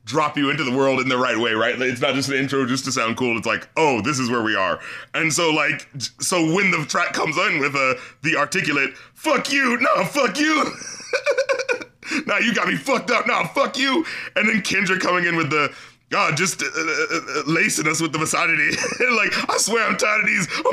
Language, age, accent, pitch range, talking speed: English, 30-49, American, 140-215 Hz, 230 wpm